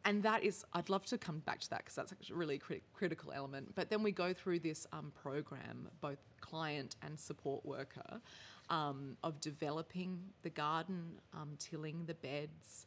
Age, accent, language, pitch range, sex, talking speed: 20-39, Australian, English, 145-170 Hz, female, 175 wpm